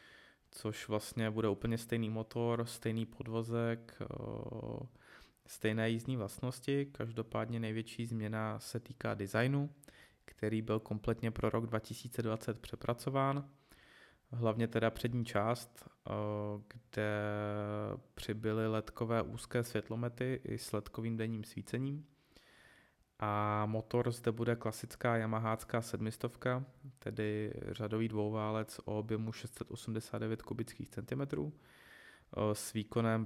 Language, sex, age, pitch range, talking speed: Czech, male, 20-39, 105-120 Hz, 100 wpm